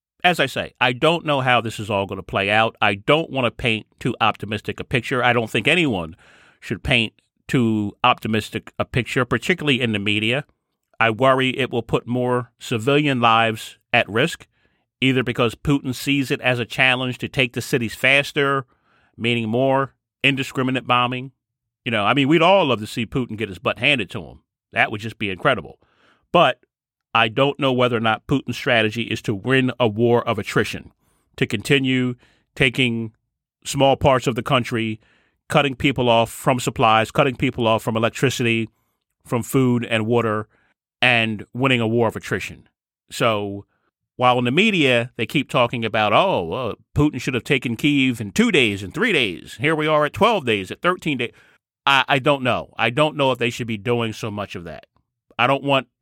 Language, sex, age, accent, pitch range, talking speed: English, male, 30-49, American, 115-135 Hz, 190 wpm